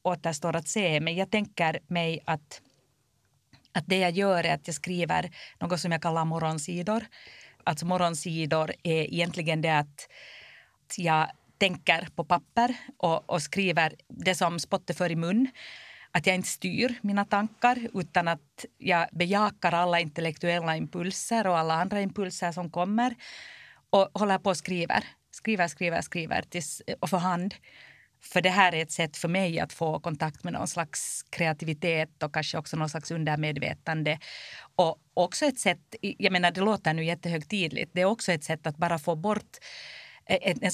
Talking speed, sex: 165 wpm, female